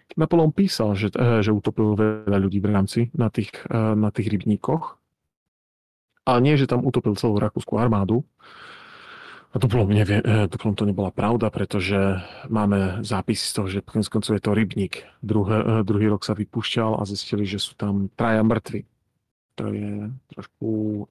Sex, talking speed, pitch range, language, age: male, 150 wpm, 105-125 Hz, Slovak, 40-59